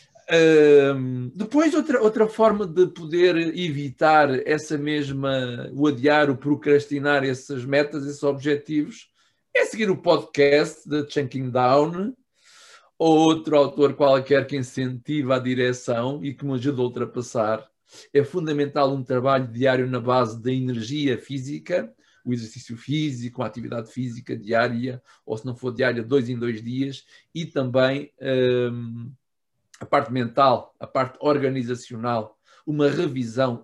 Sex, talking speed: male, 135 wpm